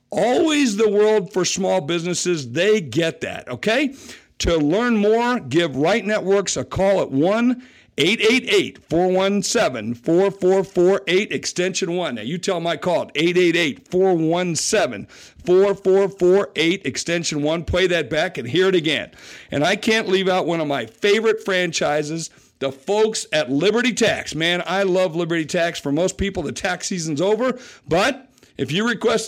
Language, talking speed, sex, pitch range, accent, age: English, 140 wpm, male, 160-205 Hz, American, 50-69